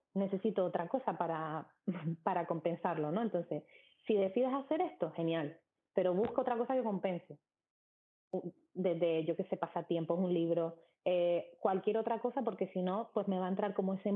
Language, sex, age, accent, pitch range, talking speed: Spanish, female, 30-49, Spanish, 175-220 Hz, 180 wpm